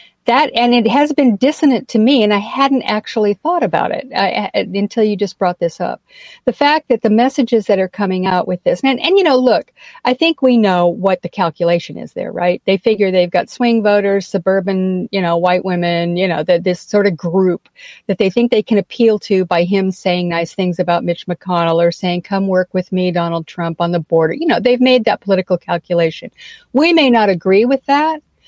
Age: 50-69